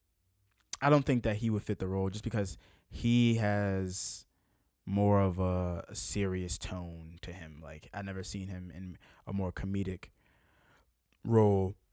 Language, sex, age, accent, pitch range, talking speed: English, male, 20-39, American, 90-110 Hz, 155 wpm